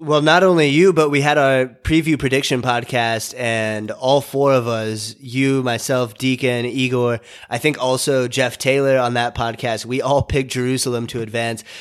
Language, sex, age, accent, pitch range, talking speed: English, male, 30-49, American, 115-135 Hz, 175 wpm